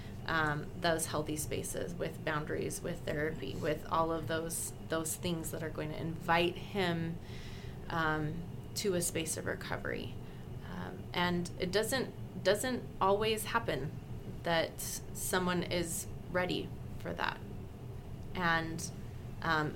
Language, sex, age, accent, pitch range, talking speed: English, female, 20-39, American, 150-170 Hz, 125 wpm